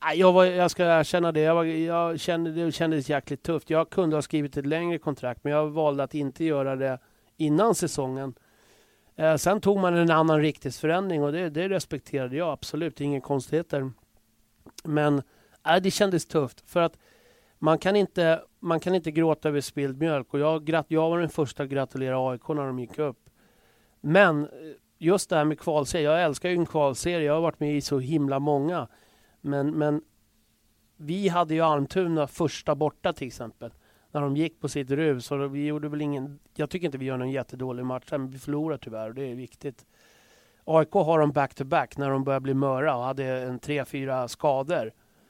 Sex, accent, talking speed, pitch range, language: male, Swedish, 195 wpm, 135-165 Hz, English